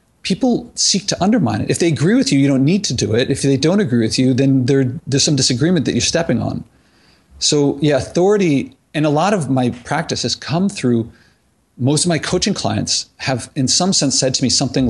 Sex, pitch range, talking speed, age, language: male, 120-155 Hz, 225 wpm, 40-59, English